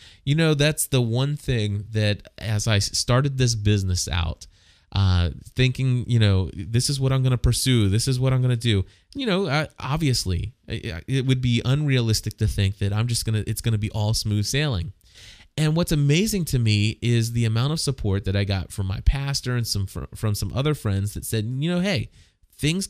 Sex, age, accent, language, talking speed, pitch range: male, 20-39, American, English, 205 wpm, 100-135 Hz